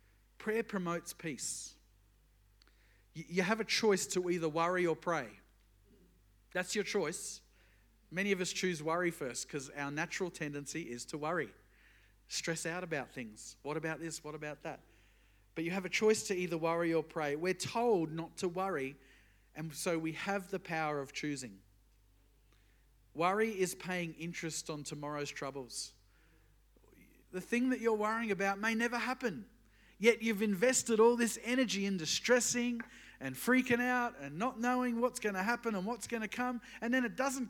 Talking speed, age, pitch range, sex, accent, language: 165 wpm, 40-59, 140-215 Hz, male, Australian, English